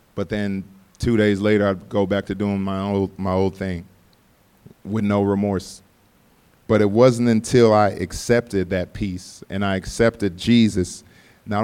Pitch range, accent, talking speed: 100-115 Hz, American, 160 wpm